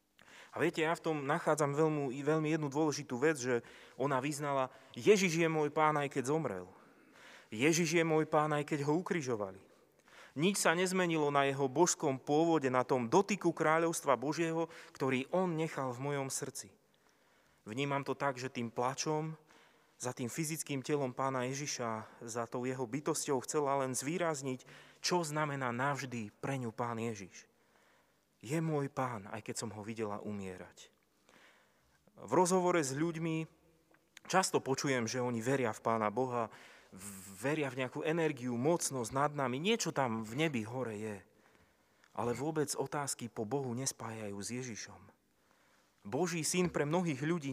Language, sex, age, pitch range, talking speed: Slovak, male, 30-49, 125-160 Hz, 150 wpm